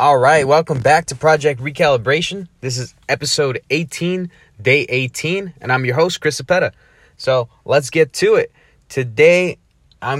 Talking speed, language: 145 wpm, English